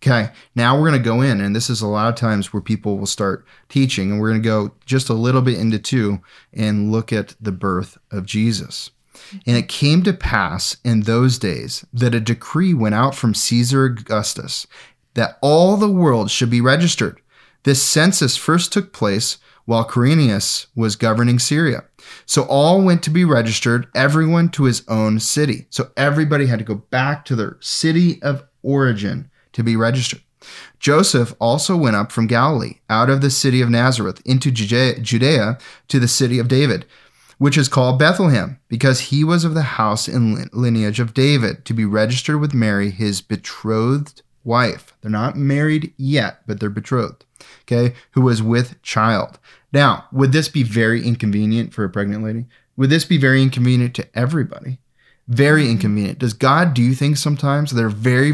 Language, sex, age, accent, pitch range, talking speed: English, male, 30-49, American, 110-140 Hz, 180 wpm